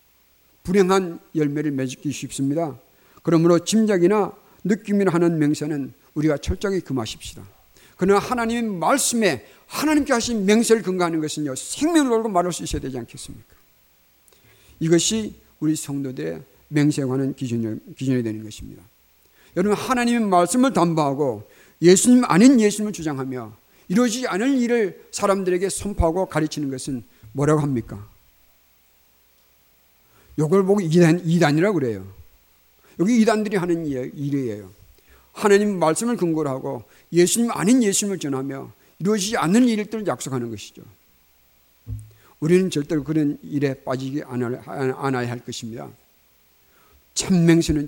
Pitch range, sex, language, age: 120-190 Hz, male, Korean, 50-69